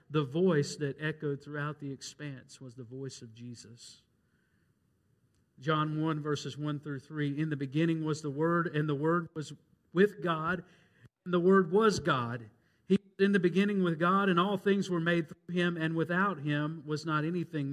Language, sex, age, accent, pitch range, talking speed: English, male, 50-69, American, 135-190 Hz, 185 wpm